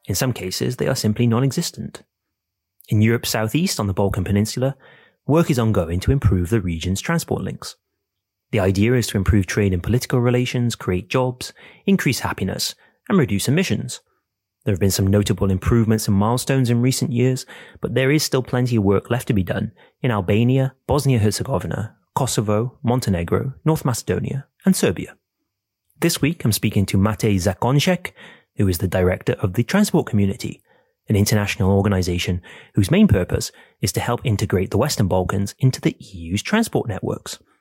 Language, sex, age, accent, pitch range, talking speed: English, male, 30-49, British, 100-130 Hz, 170 wpm